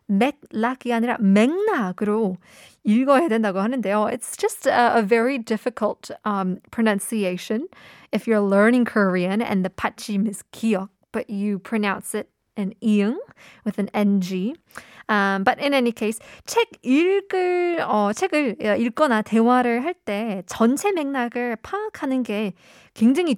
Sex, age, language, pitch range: female, 20-39, Korean, 205-260 Hz